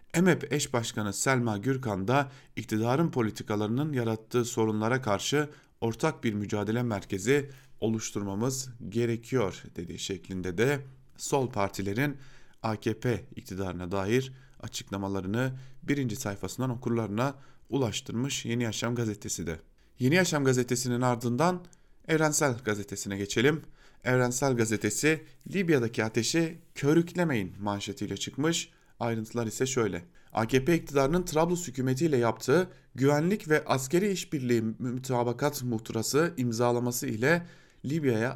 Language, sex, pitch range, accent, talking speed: German, male, 110-140 Hz, Turkish, 100 wpm